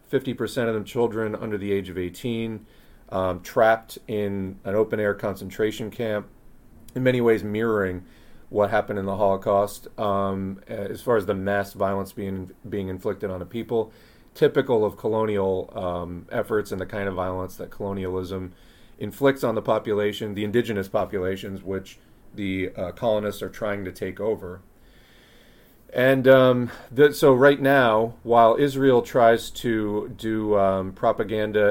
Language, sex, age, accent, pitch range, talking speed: English, male, 30-49, American, 100-115 Hz, 150 wpm